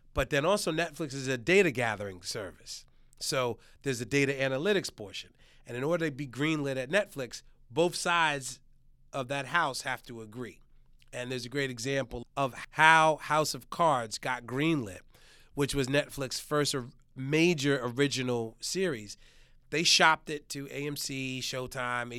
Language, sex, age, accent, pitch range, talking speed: English, male, 30-49, American, 125-155 Hz, 150 wpm